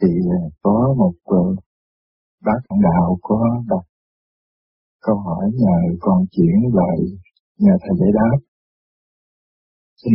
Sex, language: male, Vietnamese